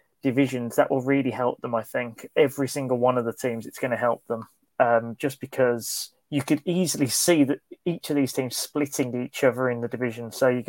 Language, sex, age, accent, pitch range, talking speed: English, male, 20-39, British, 125-150 Hz, 220 wpm